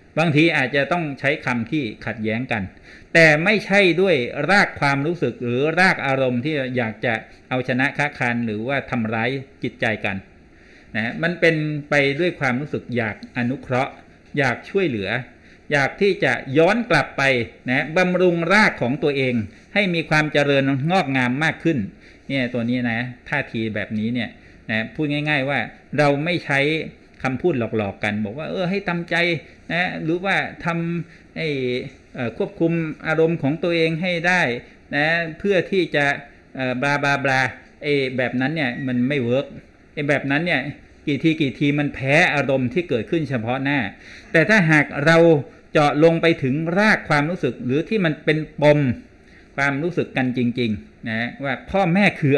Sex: male